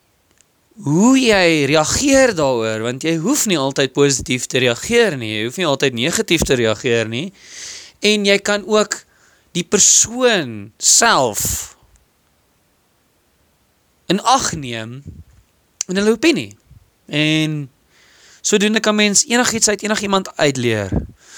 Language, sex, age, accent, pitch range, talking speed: English, male, 30-49, Dutch, 130-210 Hz, 125 wpm